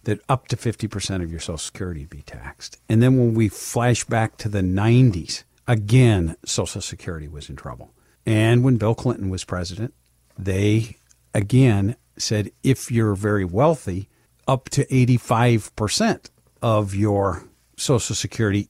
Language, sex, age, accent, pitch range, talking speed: English, male, 50-69, American, 100-125 Hz, 150 wpm